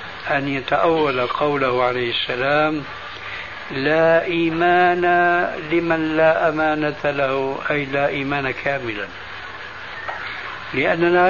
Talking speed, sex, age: 85 wpm, male, 60-79